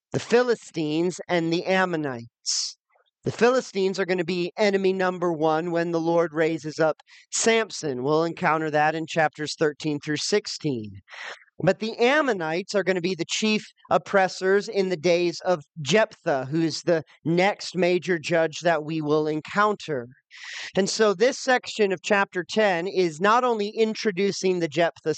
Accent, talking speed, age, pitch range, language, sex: American, 155 wpm, 40-59, 160-200 Hz, English, male